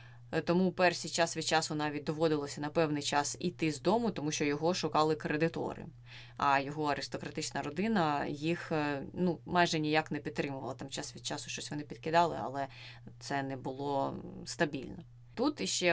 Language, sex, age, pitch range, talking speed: Ukrainian, female, 20-39, 145-170 Hz, 160 wpm